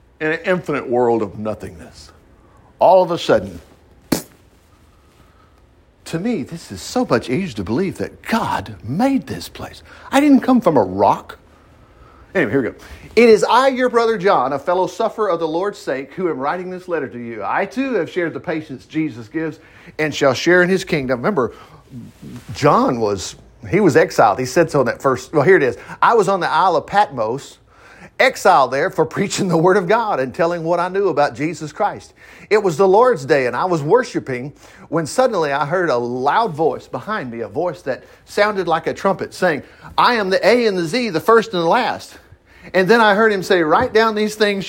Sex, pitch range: male, 145-210 Hz